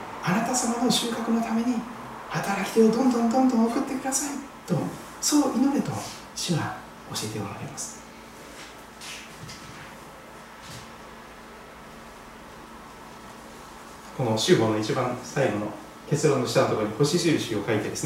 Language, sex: Japanese, male